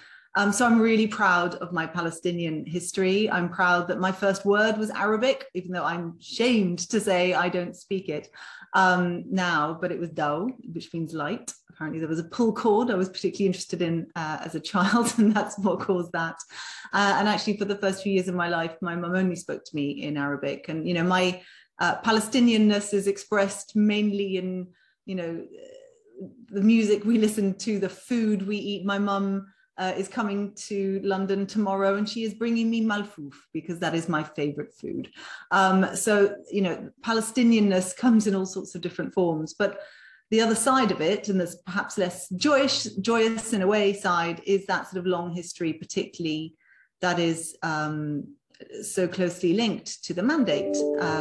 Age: 30-49